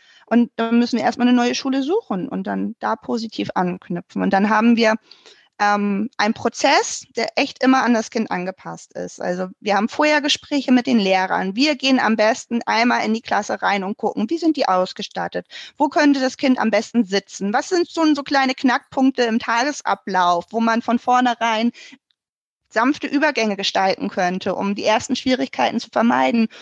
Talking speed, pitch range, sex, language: 180 wpm, 200-250 Hz, female, German